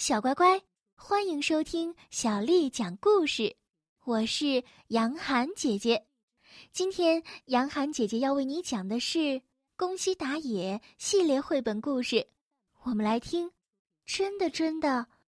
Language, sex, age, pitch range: Chinese, female, 10-29, 220-325 Hz